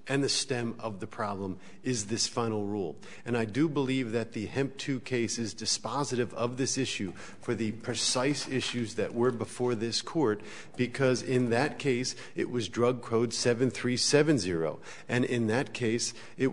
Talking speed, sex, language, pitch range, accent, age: 170 wpm, male, English, 115-145 Hz, American, 50-69